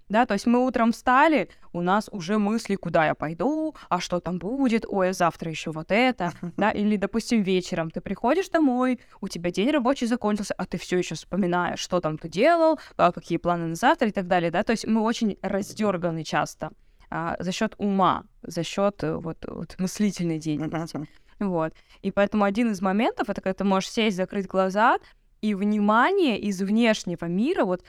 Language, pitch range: Russian, 180-225 Hz